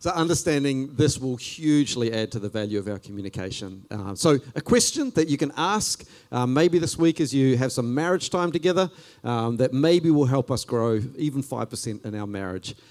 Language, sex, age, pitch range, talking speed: English, male, 40-59, 115-165 Hz, 200 wpm